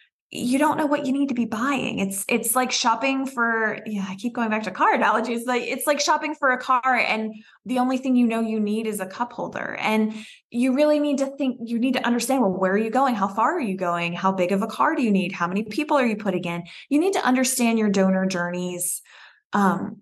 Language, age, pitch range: English, 20-39, 190-240 Hz